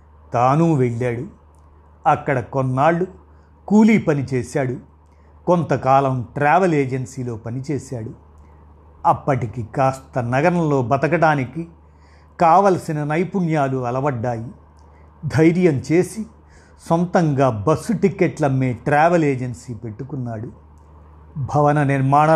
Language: Telugu